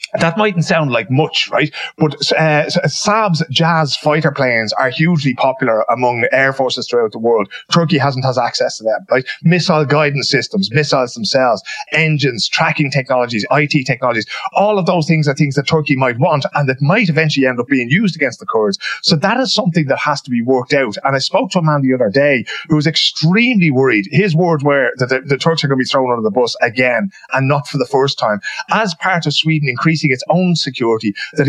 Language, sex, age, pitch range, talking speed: English, male, 30-49, 130-170 Hz, 215 wpm